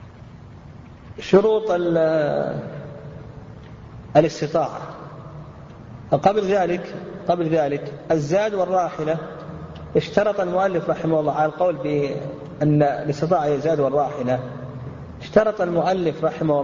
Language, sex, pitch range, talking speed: Arabic, male, 140-180 Hz, 75 wpm